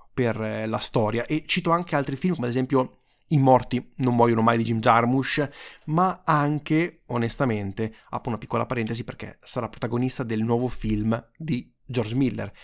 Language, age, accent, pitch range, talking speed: Italian, 30-49, native, 120-160 Hz, 165 wpm